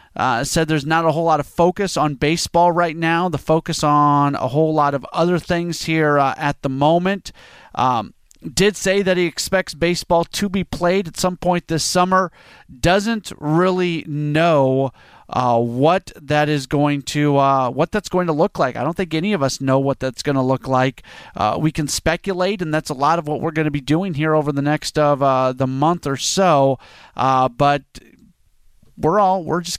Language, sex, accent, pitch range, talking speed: English, male, American, 140-170 Hz, 205 wpm